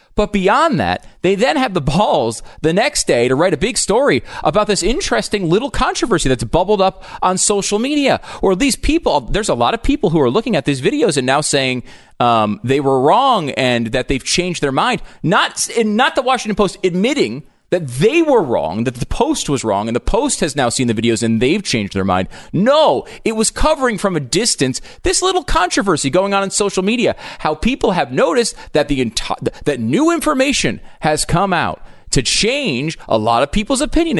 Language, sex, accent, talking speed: English, male, American, 205 wpm